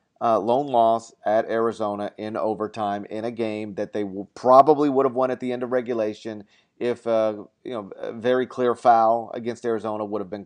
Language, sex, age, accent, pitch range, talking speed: English, male, 40-59, American, 110-130 Hz, 205 wpm